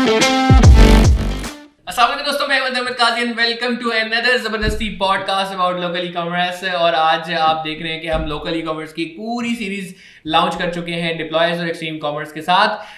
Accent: native